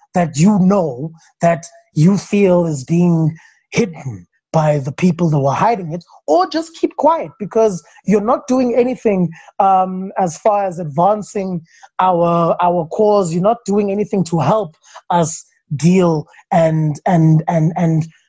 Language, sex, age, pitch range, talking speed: English, male, 20-39, 170-230 Hz, 150 wpm